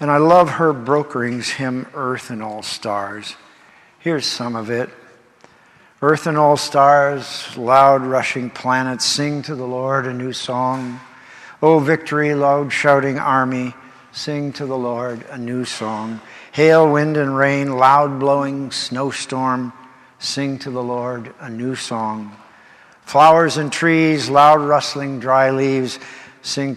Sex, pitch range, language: male, 120-145 Hz, English